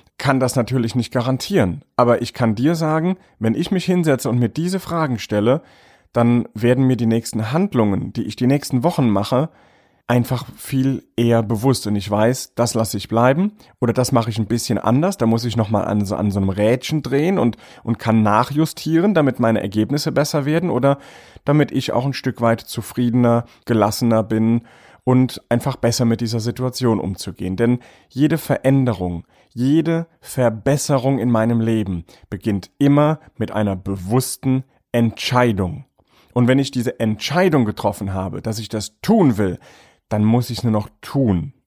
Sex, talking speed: male, 170 wpm